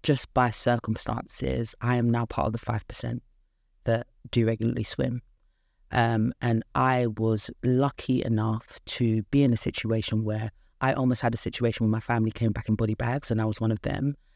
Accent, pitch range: British, 110-125 Hz